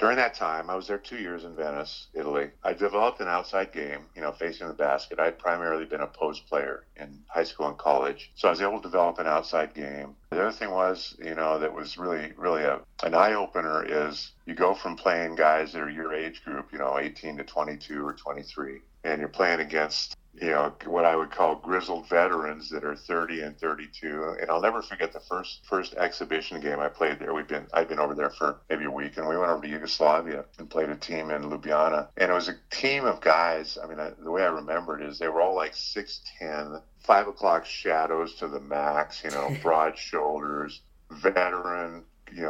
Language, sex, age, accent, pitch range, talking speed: English, male, 50-69, American, 75-85 Hz, 220 wpm